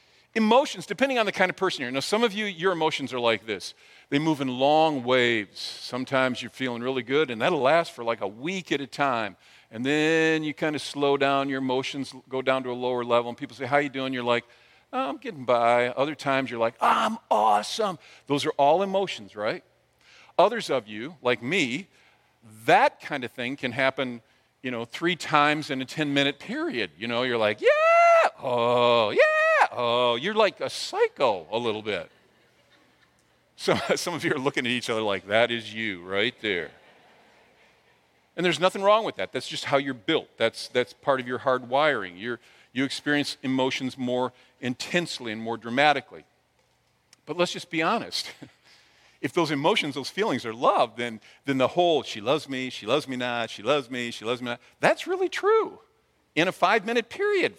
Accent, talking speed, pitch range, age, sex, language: American, 200 wpm, 125-175 Hz, 50-69, male, English